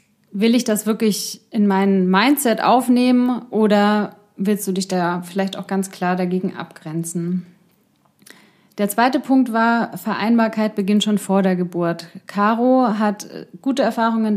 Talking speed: 140 wpm